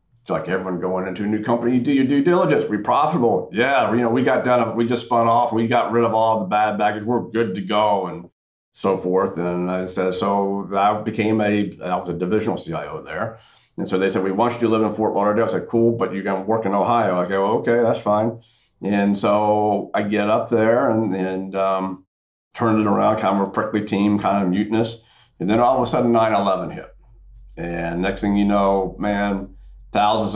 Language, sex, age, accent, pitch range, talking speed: English, male, 50-69, American, 95-115 Hz, 225 wpm